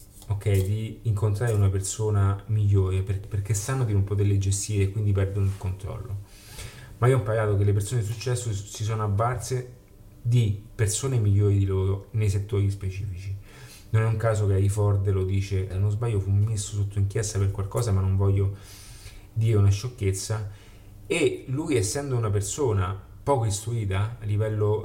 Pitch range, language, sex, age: 100-110 Hz, Italian, male, 30-49